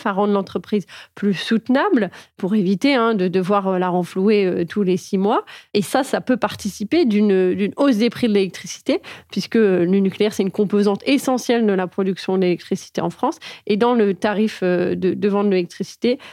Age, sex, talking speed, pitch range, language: 30-49, female, 185 wpm, 190-225 Hz, French